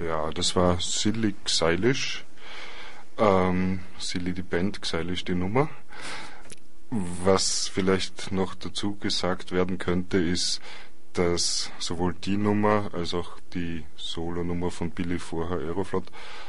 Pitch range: 85-95 Hz